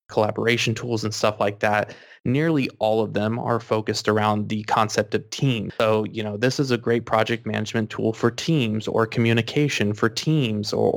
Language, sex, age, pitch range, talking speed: English, male, 20-39, 110-125 Hz, 185 wpm